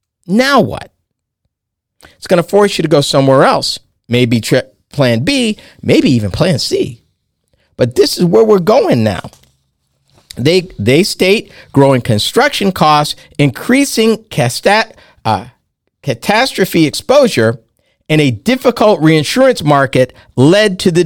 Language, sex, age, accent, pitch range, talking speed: English, male, 50-69, American, 130-200 Hz, 130 wpm